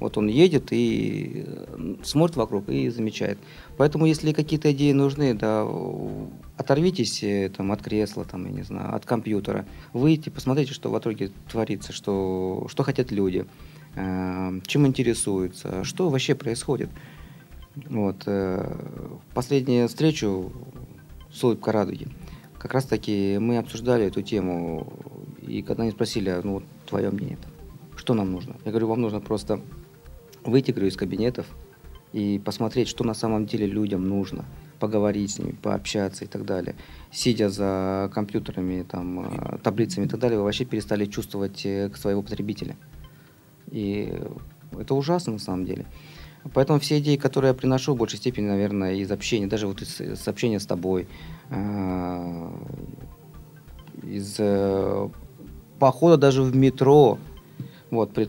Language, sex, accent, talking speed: Russian, male, native, 135 wpm